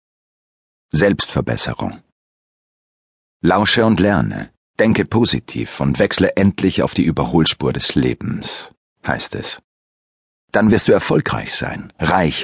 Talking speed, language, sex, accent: 105 wpm, German, male, German